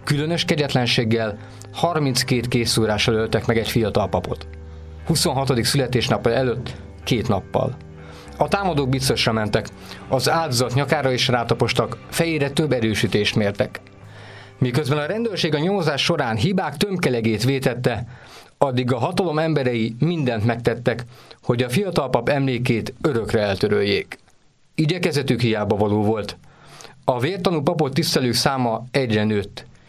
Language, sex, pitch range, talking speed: Hungarian, male, 115-155 Hz, 120 wpm